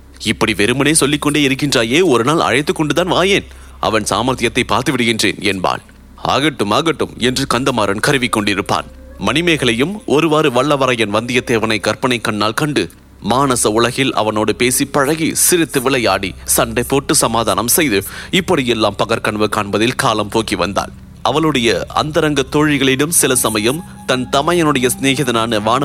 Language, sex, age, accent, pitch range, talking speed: English, male, 30-49, Indian, 105-130 Hz, 115 wpm